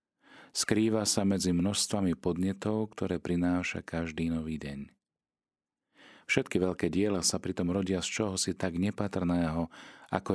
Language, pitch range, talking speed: Slovak, 80-100 Hz, 130 wpm